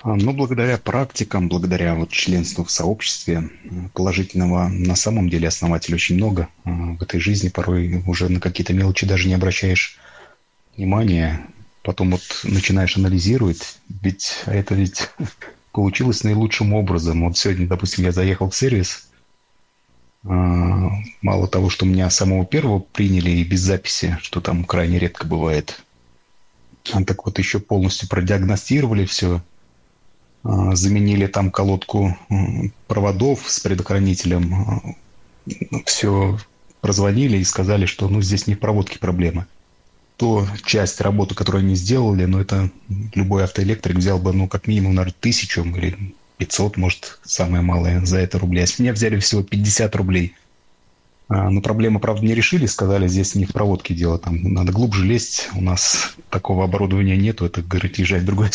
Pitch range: 90-100 Hz